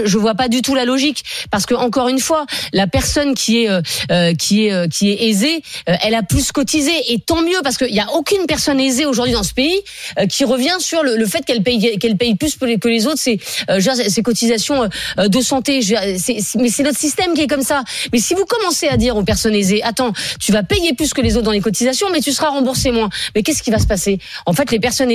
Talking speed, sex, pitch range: 260 wpm, female, 215-280 Hz